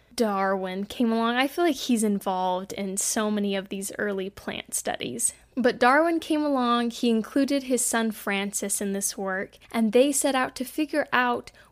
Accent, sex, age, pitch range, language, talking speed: American, female, 10-29, 205-255 Hz, English, 180 wpm